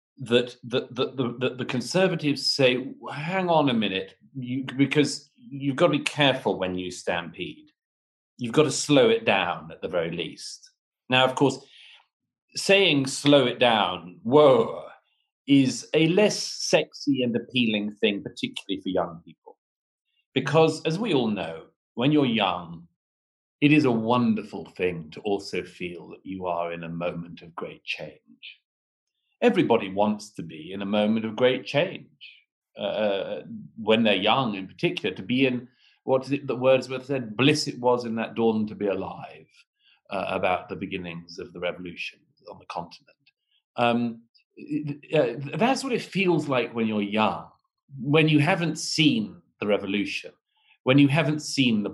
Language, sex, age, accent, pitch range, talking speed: English, male, 40-59, British, 105-150 Hz, 165 wpm